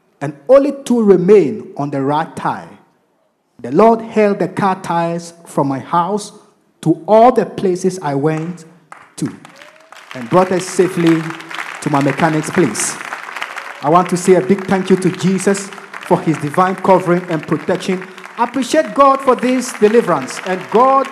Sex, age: male, 50-69